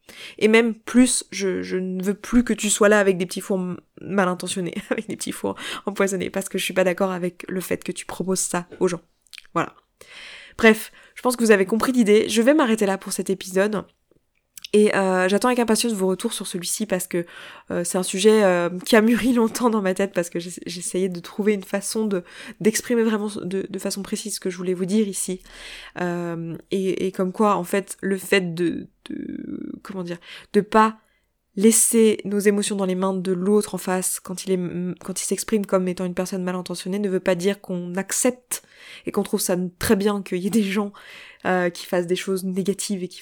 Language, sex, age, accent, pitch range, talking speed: French, female, 20-39, French, 180-210 Hz, 225 wpm